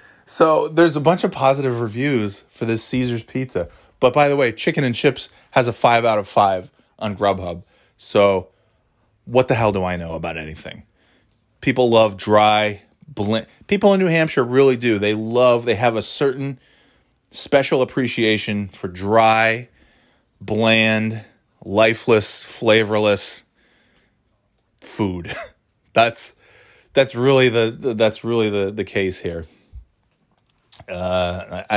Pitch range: 95-125 Hz